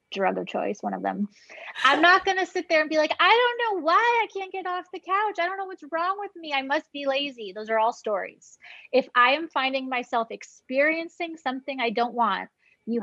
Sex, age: female, 20-39